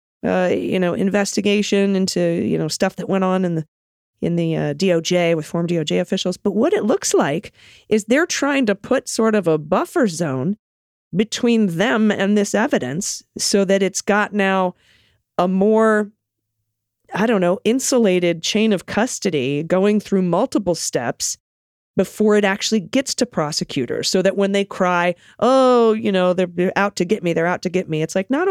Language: English